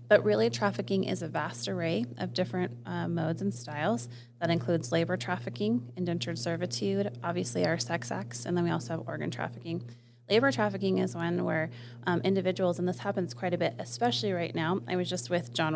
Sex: female